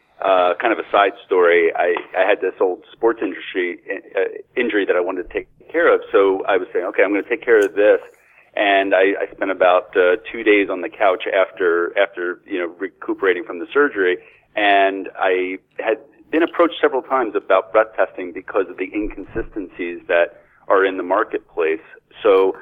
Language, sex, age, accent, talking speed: English, male, 40-59, American, 195 wpm